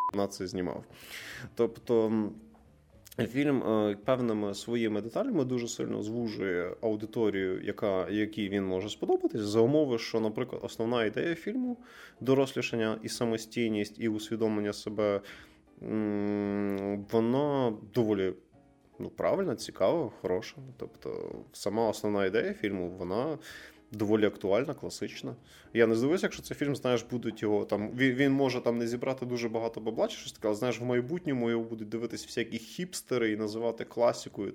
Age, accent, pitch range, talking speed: 20-39, native, 105-135 Hz, 135 wpm